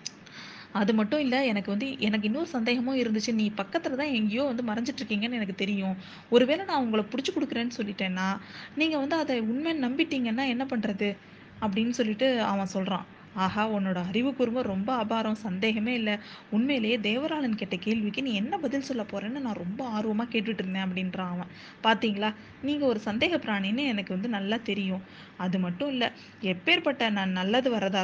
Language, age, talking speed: Tamil, 20-39, 155 wpm